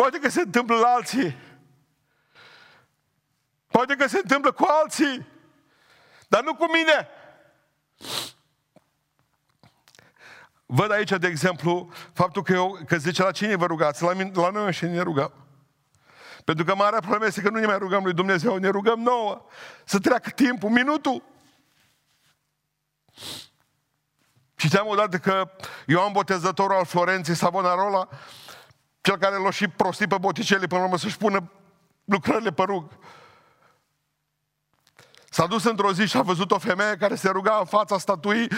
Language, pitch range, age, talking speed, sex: Romanian, 175-215 Hz, 50-69, 145 wpm, male